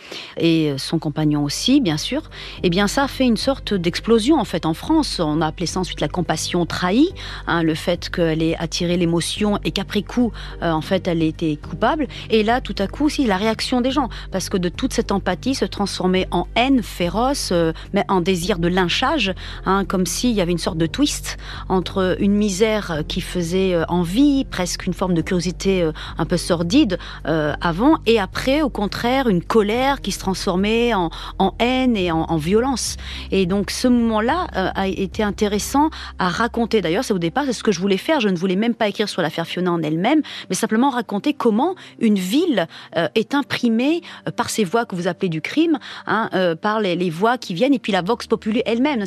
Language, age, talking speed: French, 40-59, 210 wpm